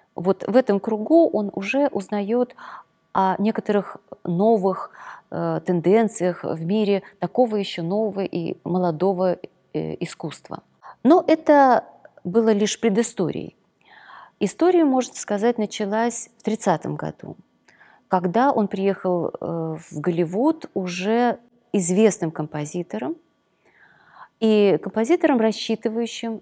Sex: female